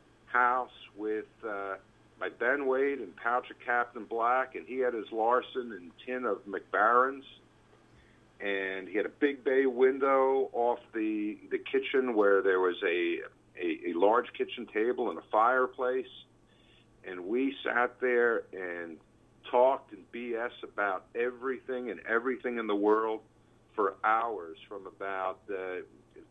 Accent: American